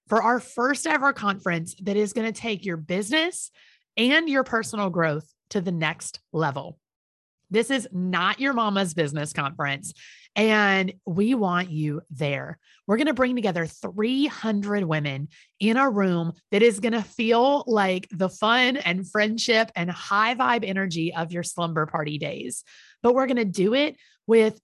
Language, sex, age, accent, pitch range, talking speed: English, female, 30-49, American, 170-235 Hz, 165 wpm